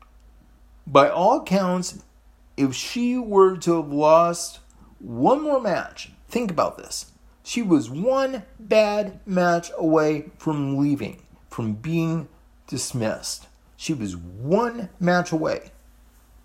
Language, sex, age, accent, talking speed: English, male, 40-59, American, 115 wpm